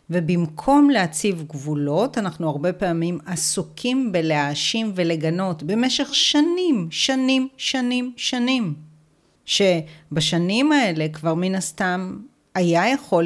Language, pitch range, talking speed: Hebrew, 160-215 Hz, 95 wpm